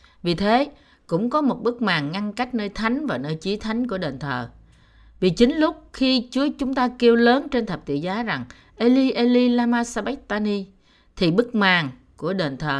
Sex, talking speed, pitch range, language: female, 195 wpm, 155-235 Hz, Vietnamese